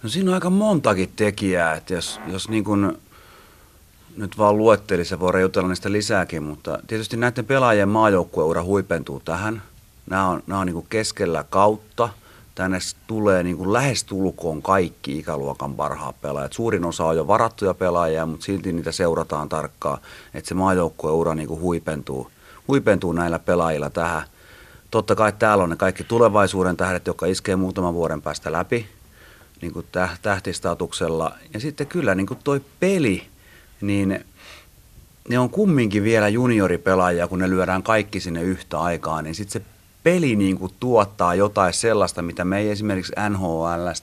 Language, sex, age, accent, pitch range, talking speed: Finnish, male, 30-49, native, 85-105 Hz, 150 wpm